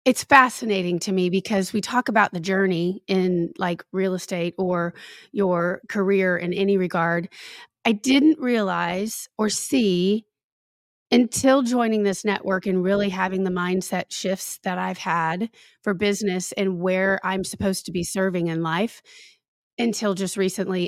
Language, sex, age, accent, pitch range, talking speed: English, female, 30-49, American, 185-215 Hz, 150 wpm